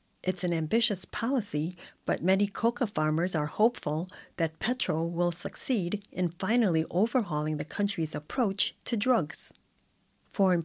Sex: female